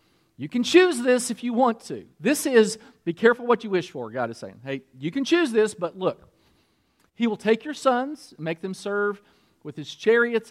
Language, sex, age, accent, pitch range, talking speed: English, male, 40-59, American, 160-225 Hz, 210 wpm